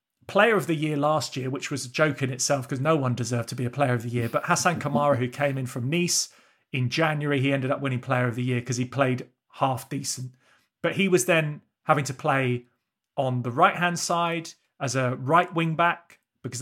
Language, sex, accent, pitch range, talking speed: English, male, British, 135-180 Hz, 230 wpm